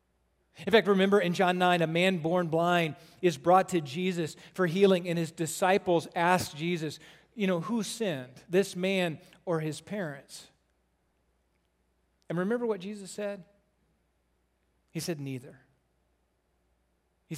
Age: 40-59